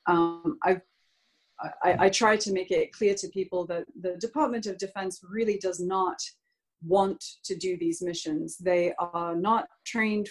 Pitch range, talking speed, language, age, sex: 180-210 Hz, 165 wpm, English, 30-49, female